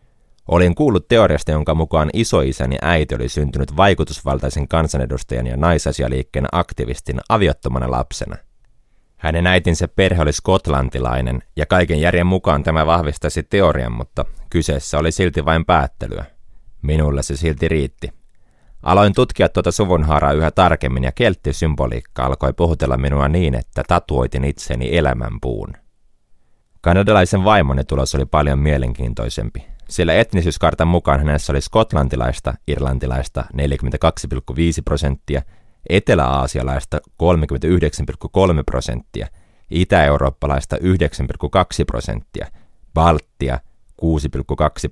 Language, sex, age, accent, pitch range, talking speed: Finnish, male, 30-49, native, 65-85 Hz, 105 wpm